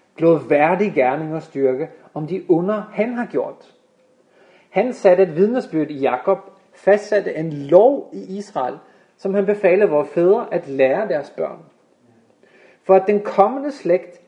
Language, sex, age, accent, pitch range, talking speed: Danish, male, 30-49, native, 170-215 Hz, 150 wpm